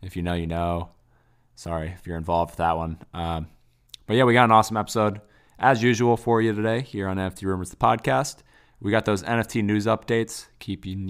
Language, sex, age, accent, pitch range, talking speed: English, male, 20-39, American, 85-105 Hz, 205 wpm